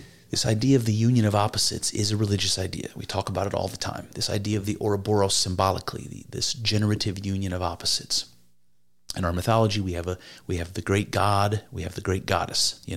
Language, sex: English, male